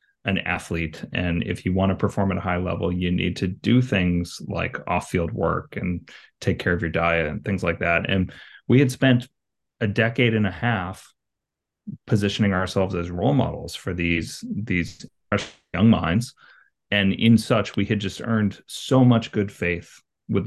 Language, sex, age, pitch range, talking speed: English, male, 30-49, 90-110 Hz, 180 wpm